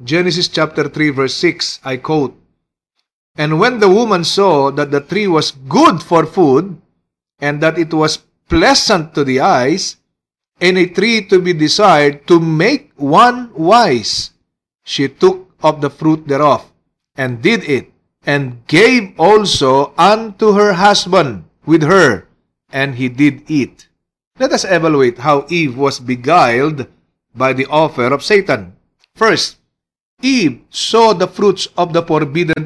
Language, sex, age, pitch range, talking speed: English, male, 40-59, 140-185 Hz, 145 wpm